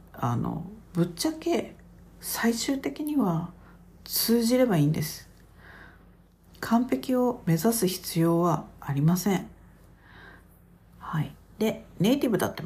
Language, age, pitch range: Japanese, 50-69, 145-205 Hz